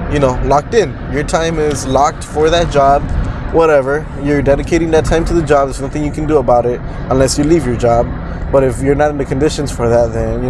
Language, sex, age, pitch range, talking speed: English, male, 20-39, 125-155 Hz, 240 wpm